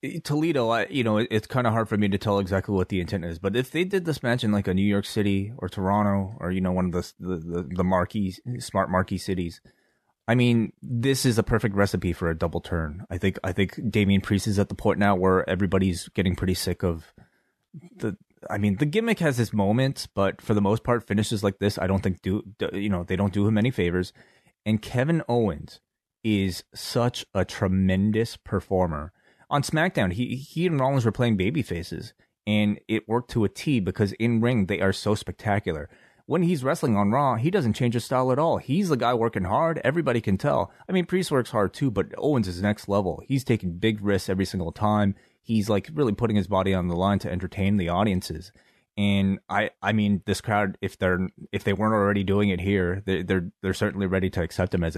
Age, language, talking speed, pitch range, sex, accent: 30-49, English, 225 wpm, 95-115 Hz, male, American